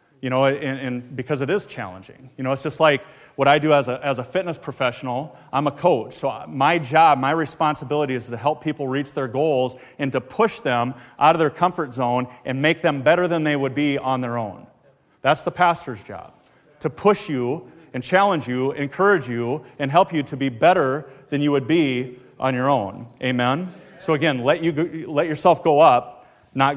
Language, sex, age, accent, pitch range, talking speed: English, male, 30-49, American, 130-160 Hz, 205 wpm